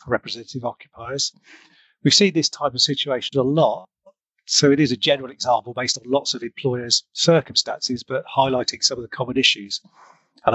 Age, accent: 40-59, British